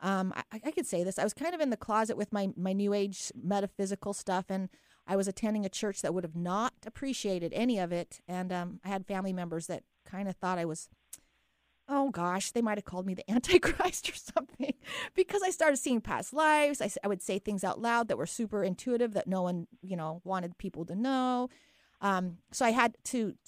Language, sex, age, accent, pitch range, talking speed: English, female, 30-49, American, 190-245 Hz, 225 wpm